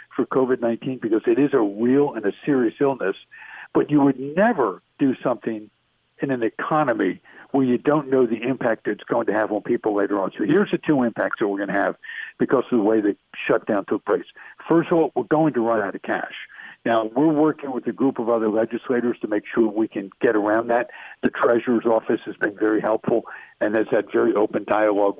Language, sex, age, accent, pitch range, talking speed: English, male, 60-79, American, 110-140 Hz, 220 wpm